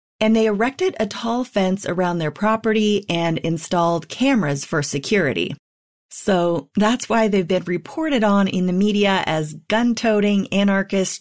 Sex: female